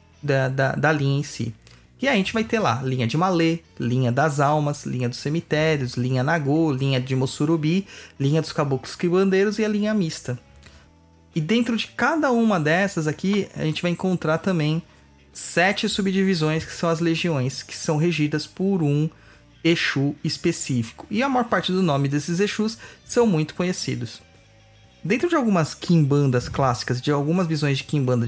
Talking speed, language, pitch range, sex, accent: 170 wpm, Portuguese, 130-180 Hz, male, Brazilian